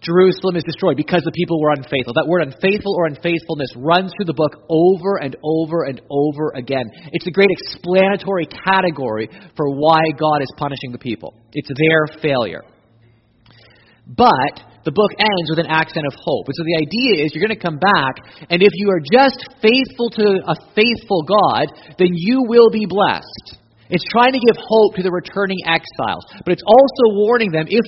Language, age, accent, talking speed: English, 30-49, American, 185 wpm